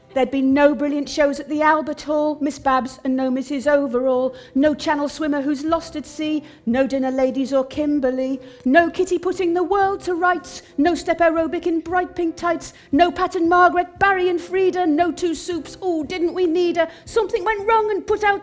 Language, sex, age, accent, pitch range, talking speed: English, female, 40-59, British, 255-345 Hz, 200 wpm